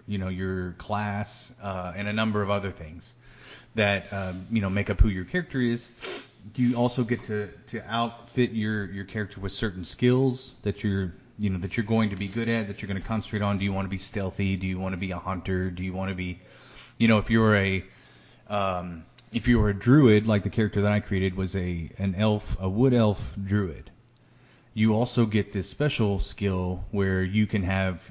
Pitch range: 95-115 Hz